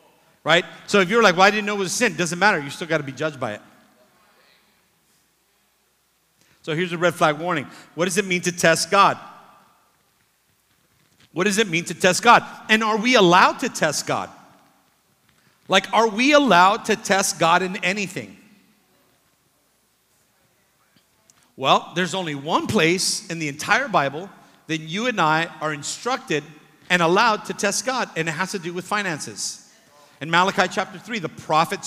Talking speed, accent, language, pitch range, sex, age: 175 wpm, American, English, 175-230 Hz, male, 50-69